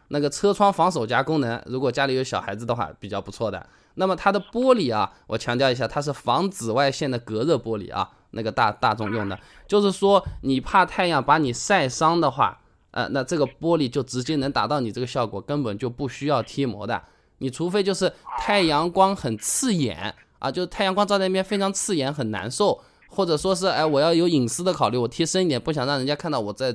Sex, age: male, 20-39